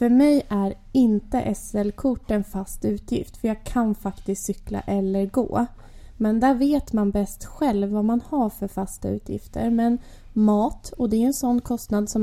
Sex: female